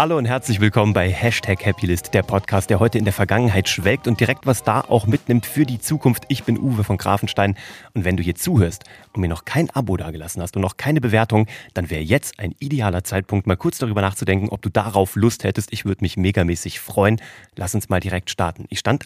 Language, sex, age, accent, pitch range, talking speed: German, male, 30-49, German, 95-120 Hz, 225 wpm